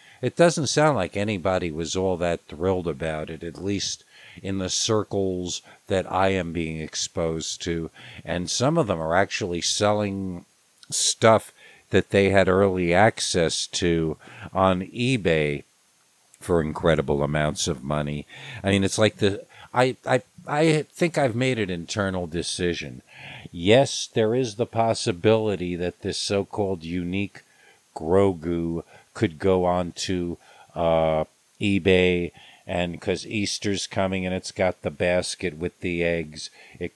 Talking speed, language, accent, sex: 140 wpm, English, American, male